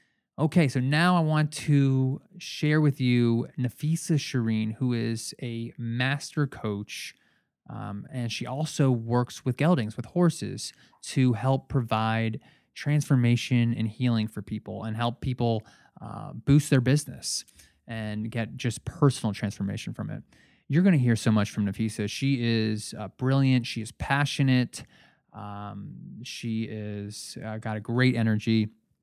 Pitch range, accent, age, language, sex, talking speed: 110-135 Hz, American, 20-39, English, male, 145 wpm